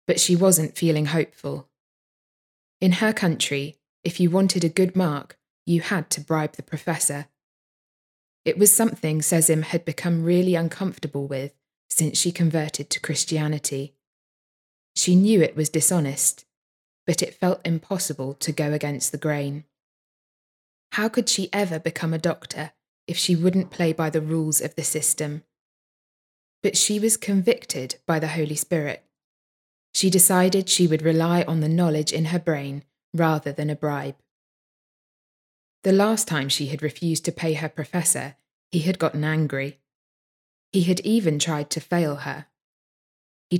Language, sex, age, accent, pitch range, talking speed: English, female, 20-39, British, 150-180 Hz, 150 wpm